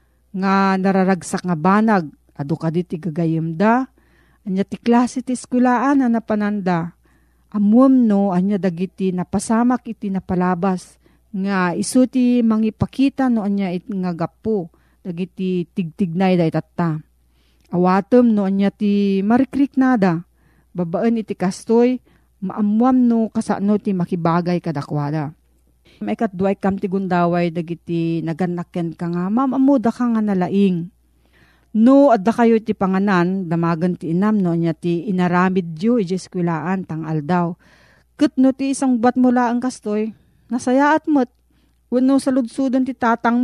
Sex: female